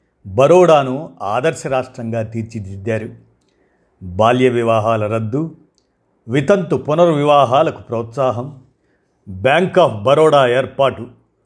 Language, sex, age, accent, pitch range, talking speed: Telugu, male, 50-69, native, 110-140 Hz, 75 wpm